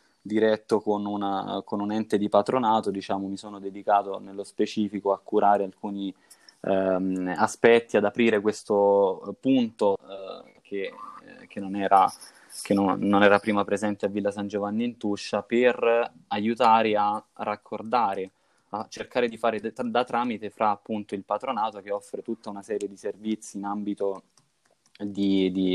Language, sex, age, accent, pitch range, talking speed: Italian, male, 20-39, native, 100-110 Hz, 140 wpm